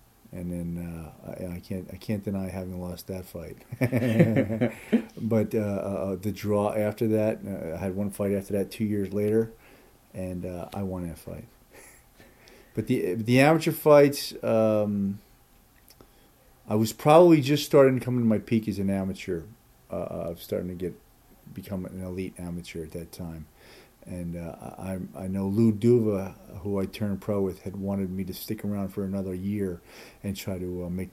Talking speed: 175 wpm